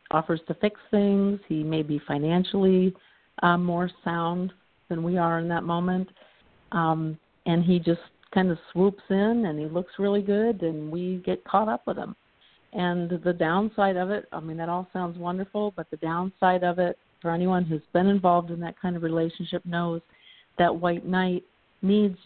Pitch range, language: 160-185 Hz, English